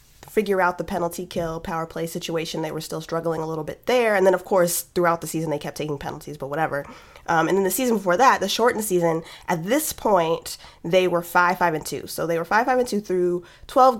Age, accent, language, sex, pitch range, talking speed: 20-39, American, English, female, 165-205 Hz, 245 wpm